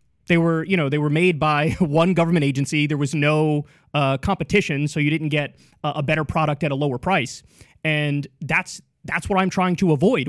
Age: 20-39